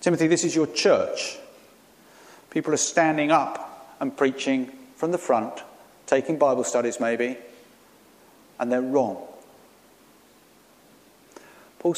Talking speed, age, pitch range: 110 wpm, 50-69, 135-165 Hz